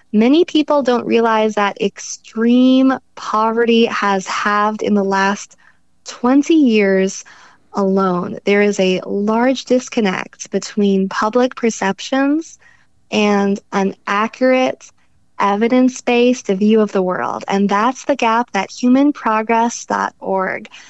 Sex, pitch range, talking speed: female, 200-245 Hz, 105 wpm